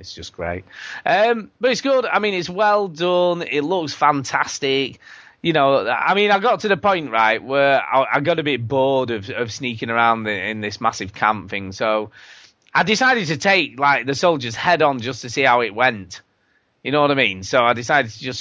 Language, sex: English, male